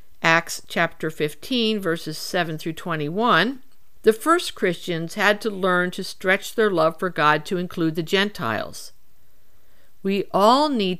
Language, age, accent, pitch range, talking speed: English, 50-69, American, 175-235 Hz, 140 wpm